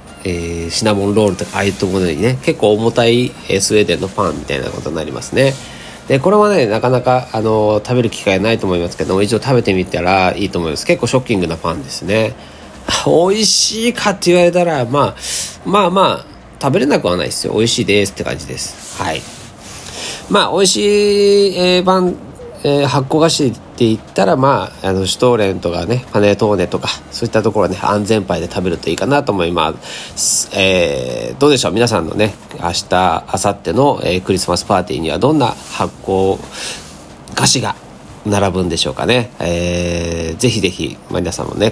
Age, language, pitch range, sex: 40-59, Japanese, 95-130 Hz, male